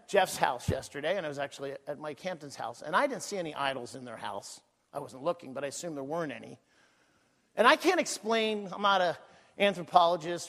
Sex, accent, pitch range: male, American, 140-185 Hz